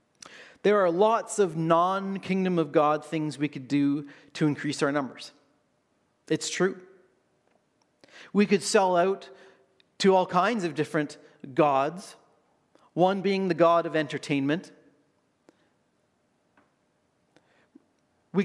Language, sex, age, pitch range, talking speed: English, male, 40-59, 155-205 Hz, 110 wpm